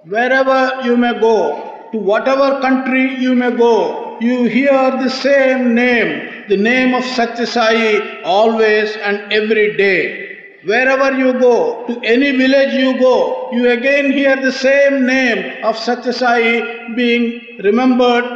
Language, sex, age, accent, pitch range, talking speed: English, male, 50-69, Indian, 240-275 Hz, 135 wpm